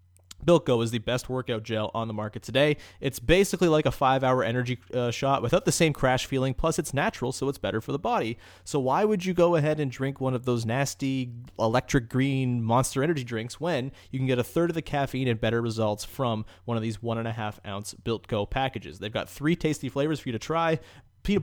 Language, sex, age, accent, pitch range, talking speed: English, male, 30-49, American, 115-150 Hz, 220 wpm